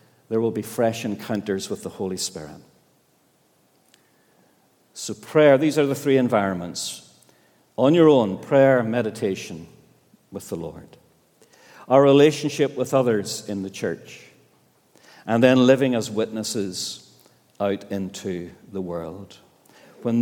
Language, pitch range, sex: English, 110-140 Hz, male